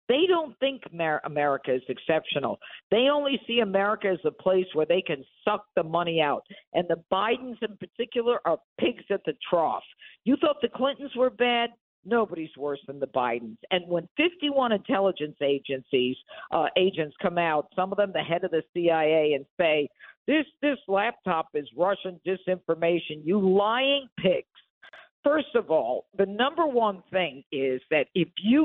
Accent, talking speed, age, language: American, 170 wpm, 50-69, English